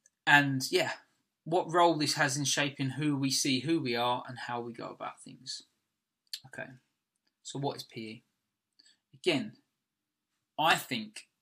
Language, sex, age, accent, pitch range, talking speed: English, male, 20-39, British, 130-175 Hz, 145 wpm